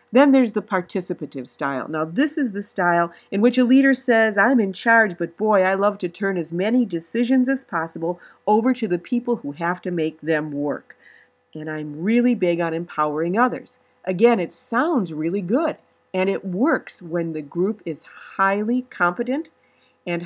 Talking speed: 180 wpm